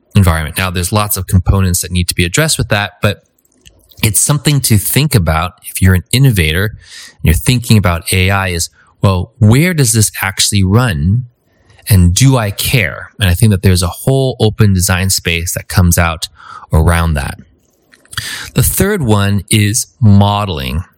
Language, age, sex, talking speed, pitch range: English, 20-39, male, 170 wpm, 95-115 Hz